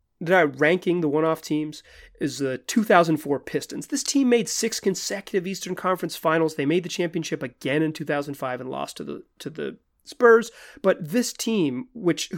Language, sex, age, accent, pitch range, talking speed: English, male, 30-49, American, 145-190 Hz, 165 wpm